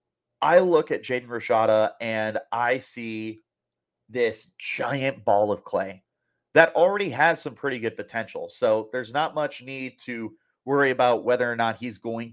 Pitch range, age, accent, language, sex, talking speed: 115-135 Hz, 30-49, American, English, male, 160 wpm